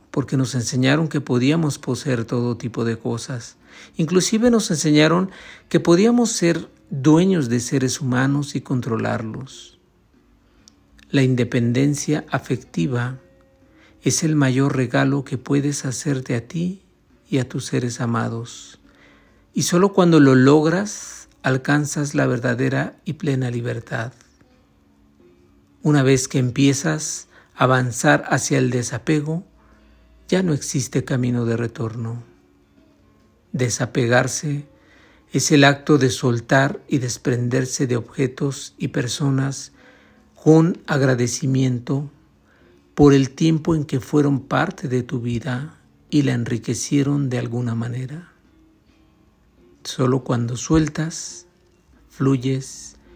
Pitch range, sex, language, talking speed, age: 120-150 Hz, male, Spanish, 110 wpm, 50-69